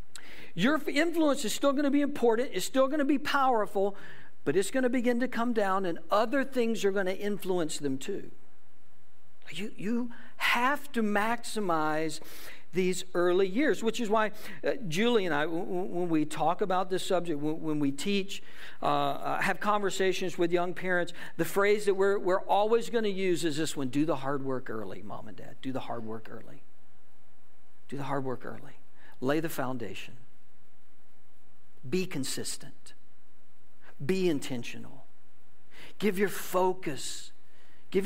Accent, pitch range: American, 145-210 Hz